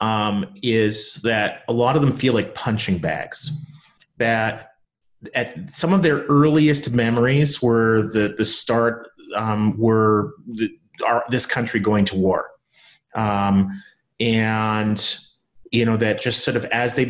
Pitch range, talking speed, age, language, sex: 110-130 Hz, 135 wpm, 30-49, English, male